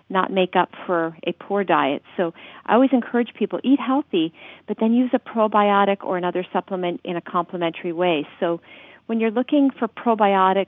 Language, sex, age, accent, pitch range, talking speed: English, female, 40-59, American, 180-220 Hz, 180 wpm